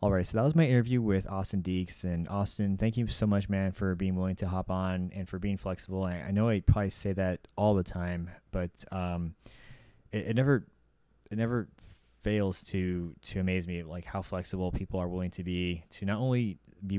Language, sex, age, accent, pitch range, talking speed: English, male, 20-39, American, 90-100 Hz, 215 wpm